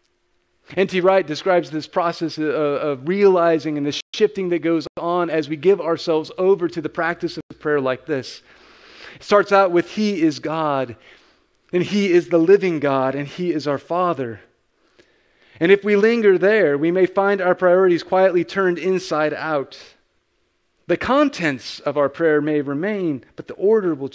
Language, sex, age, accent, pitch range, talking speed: English, male, 40-59, American, 150-180 Hz, 170 wpm